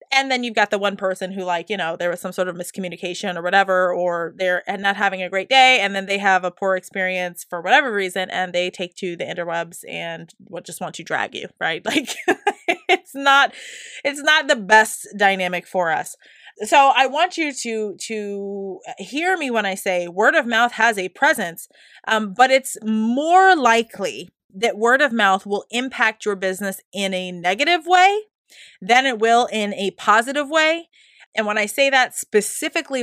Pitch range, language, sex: 185-255 Hz, English, female